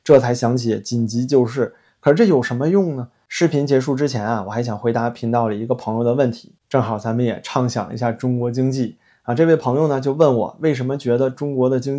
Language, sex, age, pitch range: Chinese, male, 20-39, 115-135 Hz